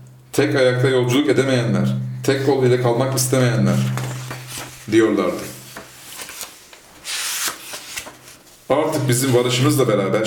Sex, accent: male, native